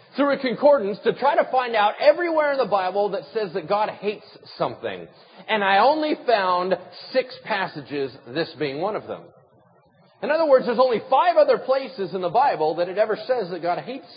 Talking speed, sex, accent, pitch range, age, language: 200 wpm, male, American, 170-280 Hz, 40-59, English